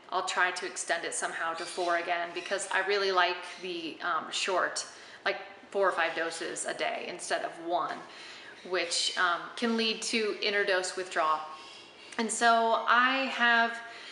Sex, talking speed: female, 155 wpm